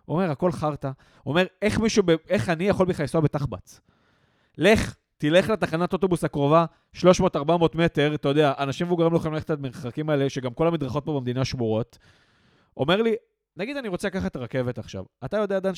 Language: Hebrew